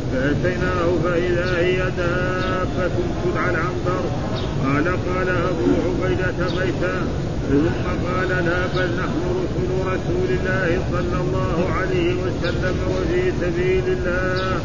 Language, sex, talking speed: Arabic, male, 105 wpm